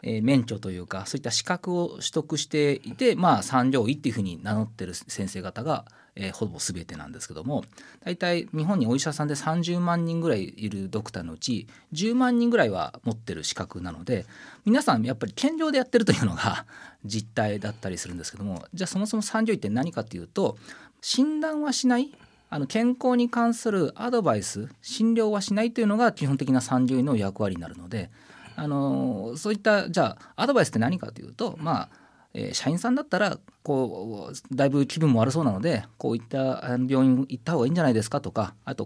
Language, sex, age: Japanese, male, 40-59